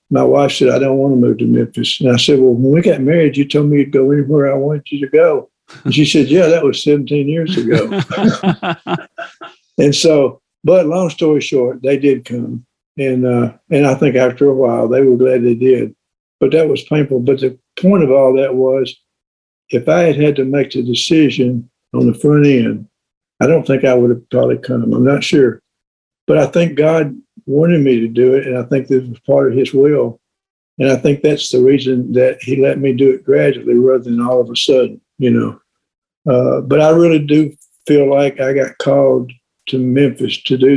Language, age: English, 60-79